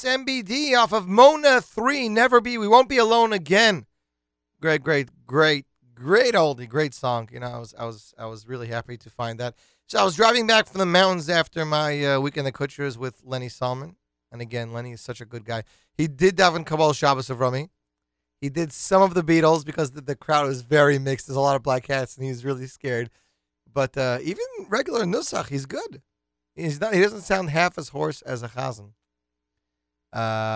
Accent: American